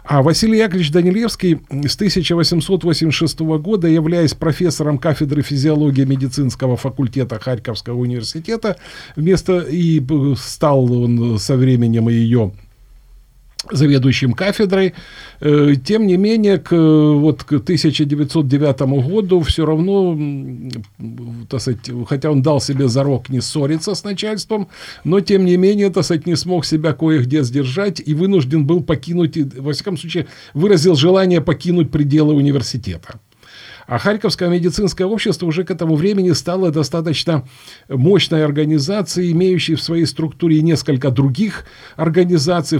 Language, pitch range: Ukrainian, 135-180 Hz